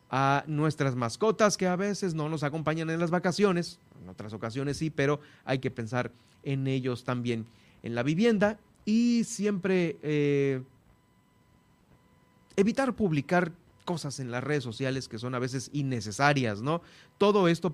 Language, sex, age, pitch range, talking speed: Spanish, male, 30-49, 125-160 Hz, 150 wpm